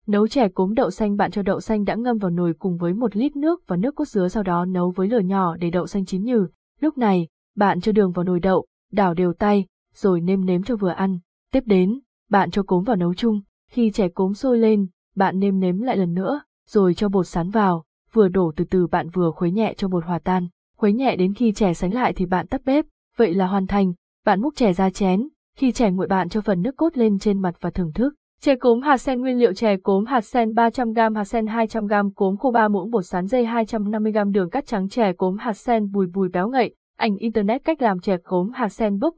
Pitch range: 185-230 Hz